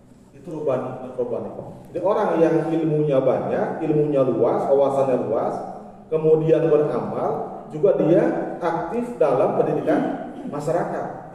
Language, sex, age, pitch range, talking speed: Malay, male, 40-59, 130-175 Hz, 100 wpm